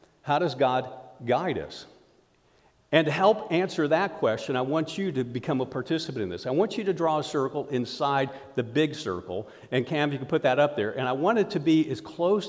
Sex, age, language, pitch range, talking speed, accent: male, 50-69, English, 125-165 Hz, 225 wpm, American